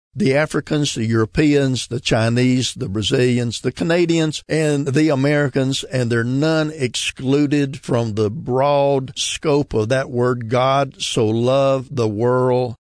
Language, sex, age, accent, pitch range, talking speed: English, male, 50-69, American, 115-145 Hz, 135 wpm